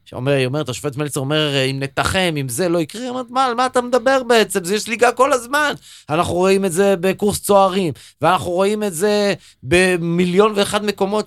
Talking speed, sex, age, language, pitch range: 200 wpm, male, 30-49, Russian, 135-210 Hz